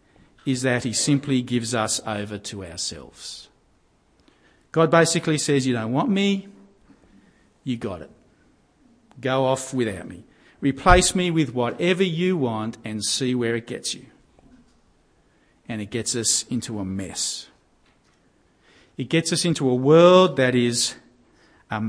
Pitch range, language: 110-160 Hz, English